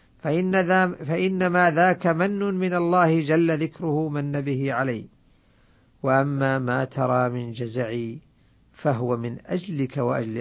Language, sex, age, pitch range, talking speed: Arabic, male, 50-69, 125-165 Hz, 120 wpm